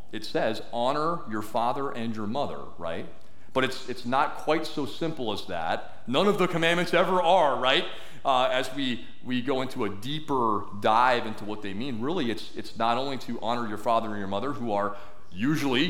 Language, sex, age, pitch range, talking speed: English, male, 40-59, 105-155 Hz, 200 wpm